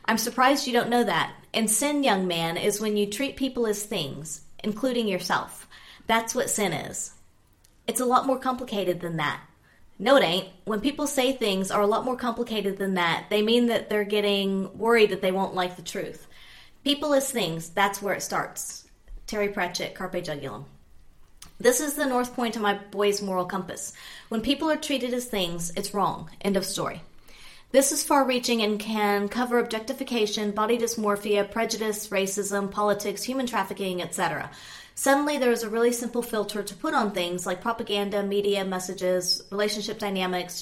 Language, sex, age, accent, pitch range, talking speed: English, female, 30-49, American, 190-235 Hz, 180 wpm